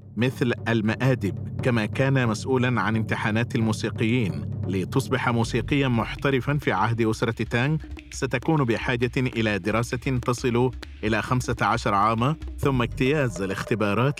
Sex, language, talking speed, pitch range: male, Arabic, 110 wpm, 110-130 Hz